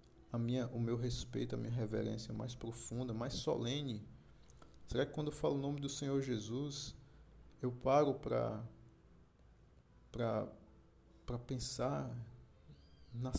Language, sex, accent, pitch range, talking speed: Portuguese, male, Brazilian, 120-145 Hz, 125 wpm